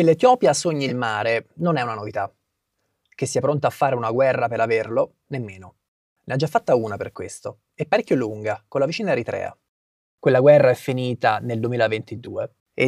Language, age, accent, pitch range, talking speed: Italian, 30-49, native, 115-170 Hz, 175 wpm